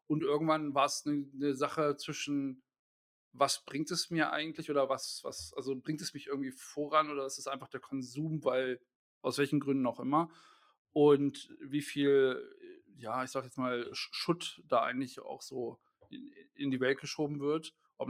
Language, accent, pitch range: German, German, 130-155 Hz